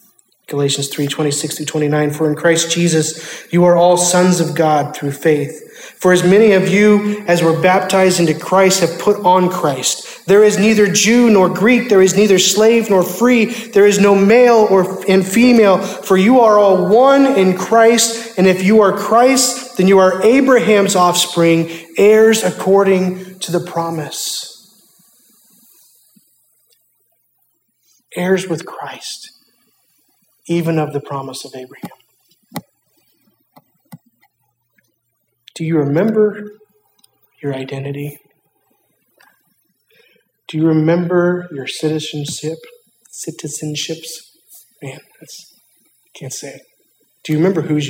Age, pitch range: 30-49, 155-210 Hz